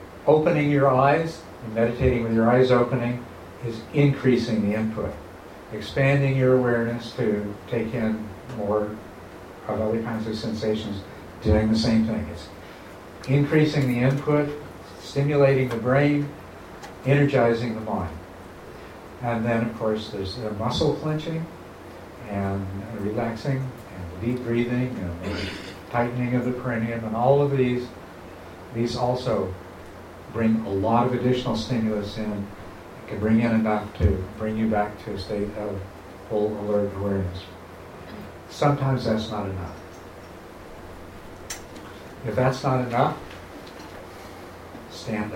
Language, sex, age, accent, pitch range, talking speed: English, male, 60-79, American, 95-125 Hz, 125 wpm